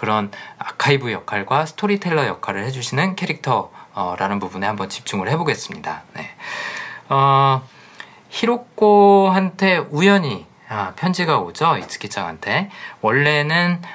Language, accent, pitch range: Korean, native, 120-175 Hz